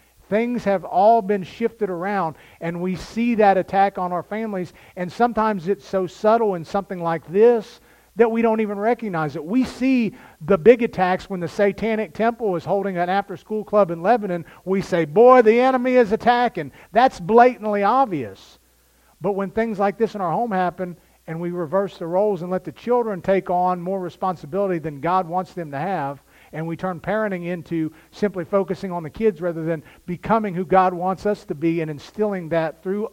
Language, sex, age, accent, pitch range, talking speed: English, male, 50-69, American, 160-205 Hz, 190 wpm